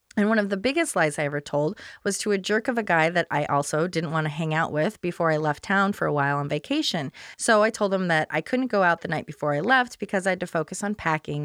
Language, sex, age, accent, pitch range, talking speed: English, female, 30-49, American, 155-205 Hz, 290 wpm